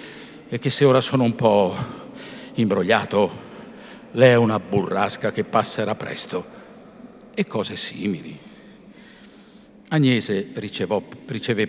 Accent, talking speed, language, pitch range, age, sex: native, 105 wpm, Italian, 95-130 Hz, 50-69, male